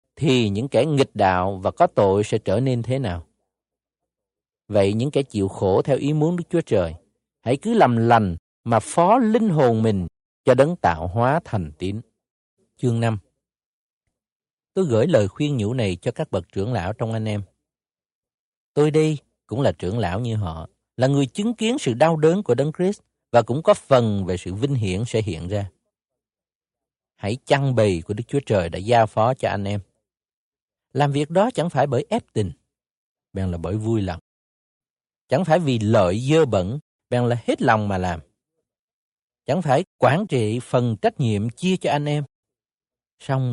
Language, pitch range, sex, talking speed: Vietnamese, 100-140 Hz, male, 185 wpm